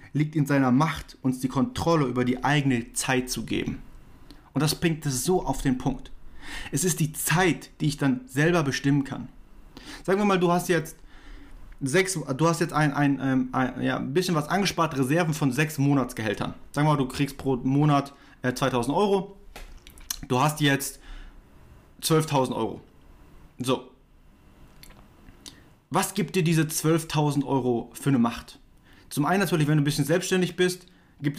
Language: German